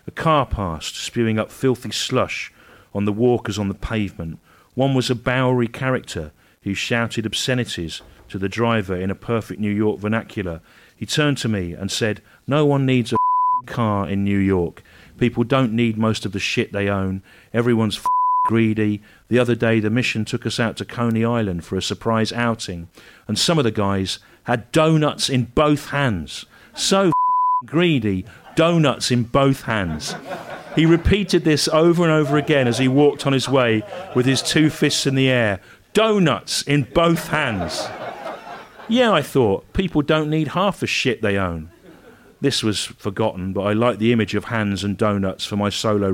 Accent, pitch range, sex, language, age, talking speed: British, 100-145 Hz, male, English, 40-59, 180 wpm